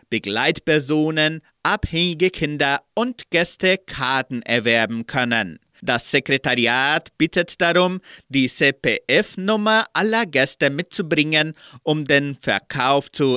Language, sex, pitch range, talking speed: German, male, 130-170 Hz, 95 wpm